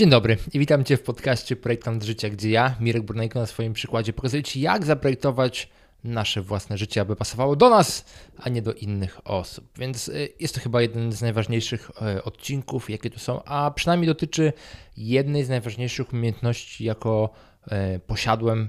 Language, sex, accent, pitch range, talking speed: Polish, male, native, 110-130 Hz, 165 wpm